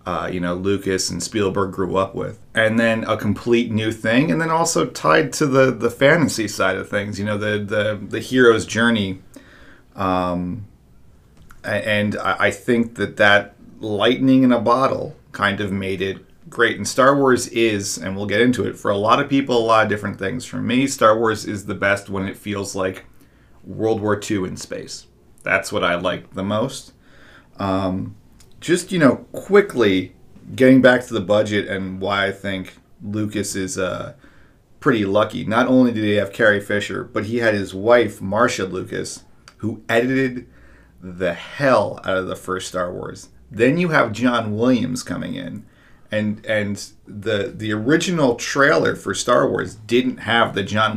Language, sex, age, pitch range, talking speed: English, male, 30-49, 95-120 Hz, 180 wpm